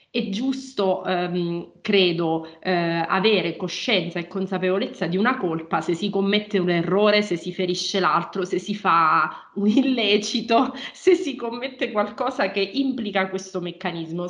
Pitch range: 175-215 Hz